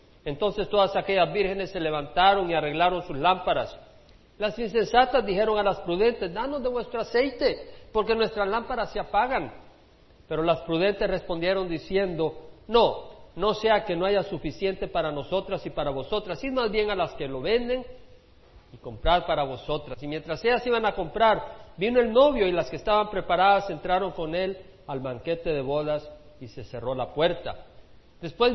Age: 50-69